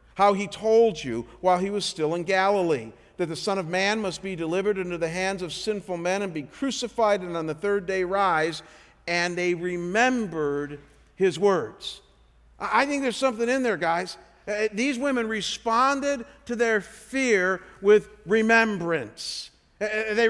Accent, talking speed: American, 160 wpm